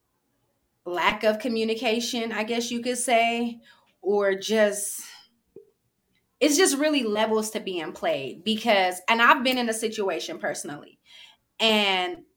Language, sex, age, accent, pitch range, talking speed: English, female, 20-39, American, 190-235 Hz, 125 wpm